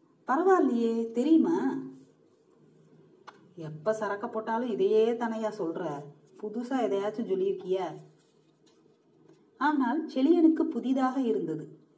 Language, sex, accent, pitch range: Tamil, female, native, 200-270 Hz